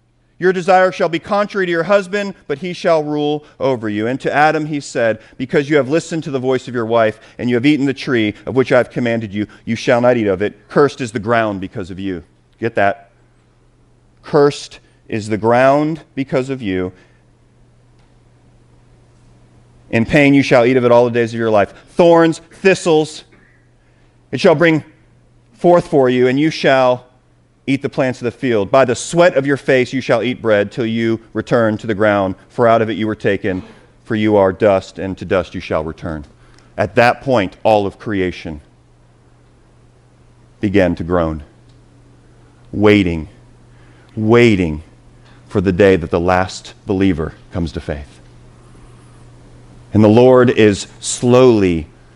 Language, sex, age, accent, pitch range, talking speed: English, male, 40-59, American, 100-140 Hz, 175 wpm